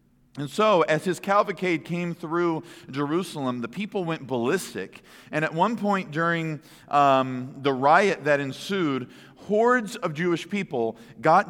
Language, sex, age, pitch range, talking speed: English, male, 40-59, 150-200 Hz, 140 wpm